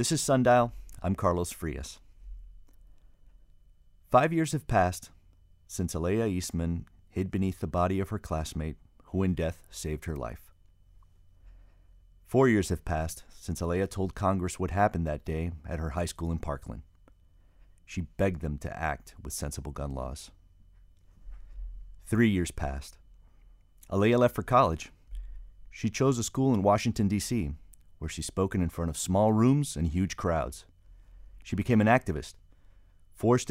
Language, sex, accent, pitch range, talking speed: English, male, American, 80-95 Hz, 150 wpm